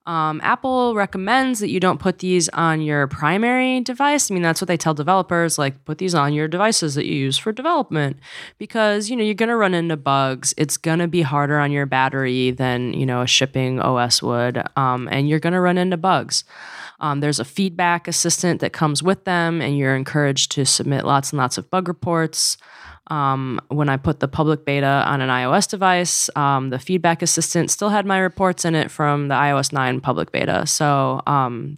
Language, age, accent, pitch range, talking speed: English, 20-39, American, 140-185 Hz, 210 wpm